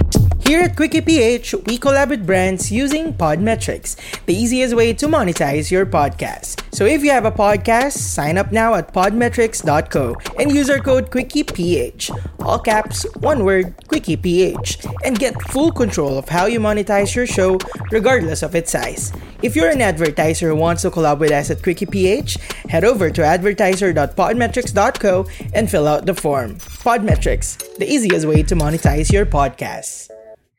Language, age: English, 20-39